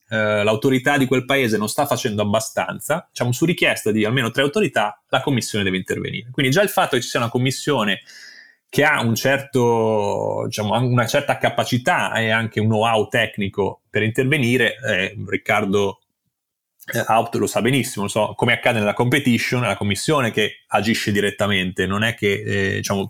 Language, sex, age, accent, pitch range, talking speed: Italian, male, 30-49, native, 105-135 Hz, 170 wpm